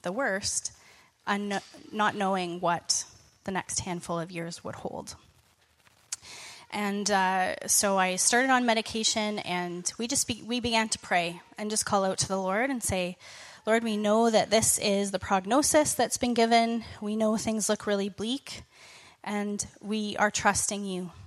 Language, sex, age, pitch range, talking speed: English, female, 20-39, 190-225 Hz, 165 wpm